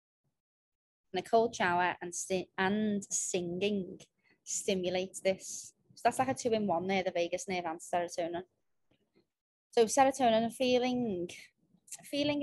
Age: 20-39